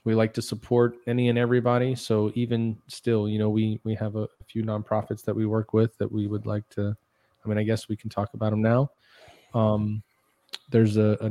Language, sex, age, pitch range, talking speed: English, male, 20-39, 105-115 Hz, 220 wpm